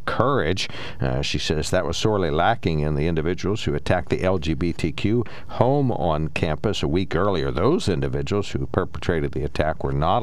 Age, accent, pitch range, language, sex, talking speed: 60-79, American, 75-105 Hz, English, male, 170 wpm